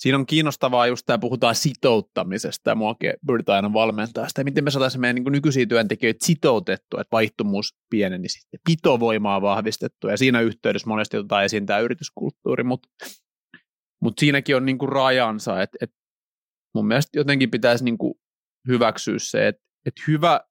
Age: 30-49